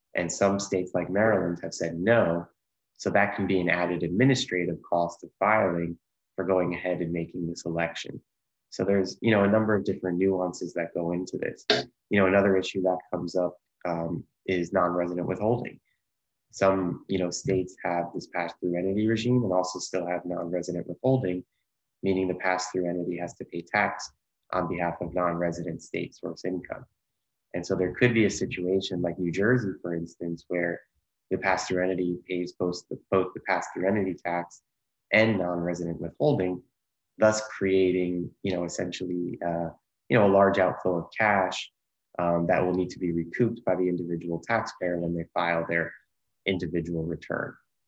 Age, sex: 20-39, male